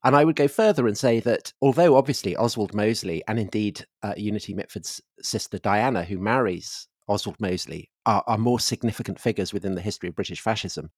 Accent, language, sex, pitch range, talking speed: British, English, male, 105-135 Hz, 185 wpm